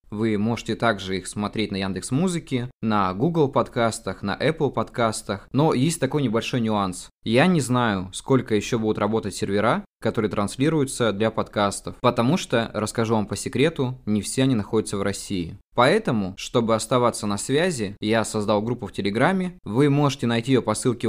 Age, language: 20-39, Russian